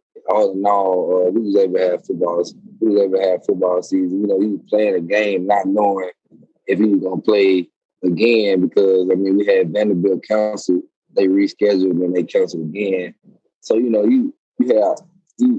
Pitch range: 90-105 Hz